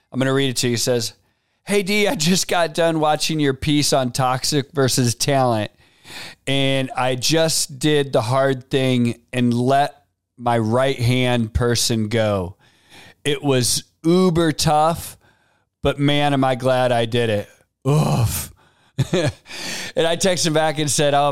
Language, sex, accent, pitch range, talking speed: English, male, American, 120-155 Hz, 160 wpm